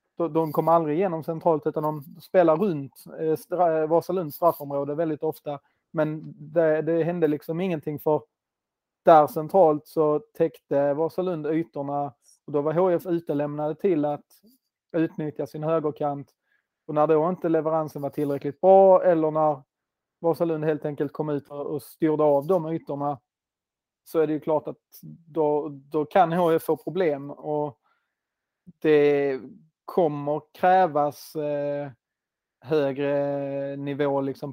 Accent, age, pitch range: native, 30-49, 145-160 Hz